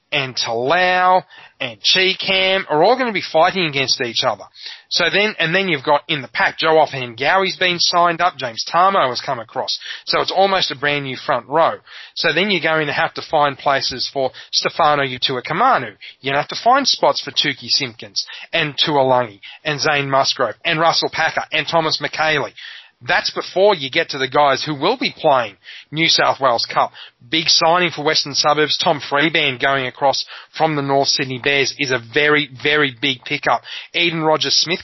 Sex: male